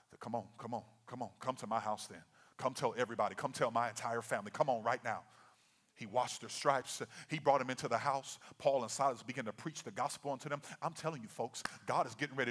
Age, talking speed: 40-59, 245 wpm